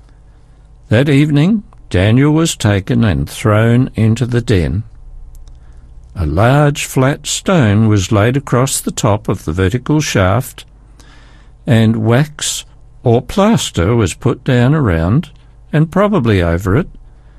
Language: English